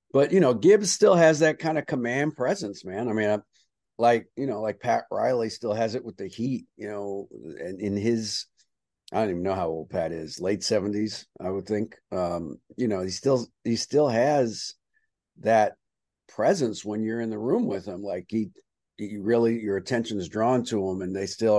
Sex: male